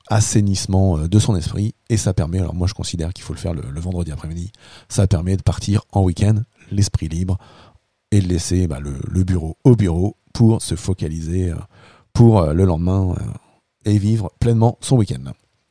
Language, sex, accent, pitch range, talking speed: French, male, French, 90-115 Hz, 180 wpm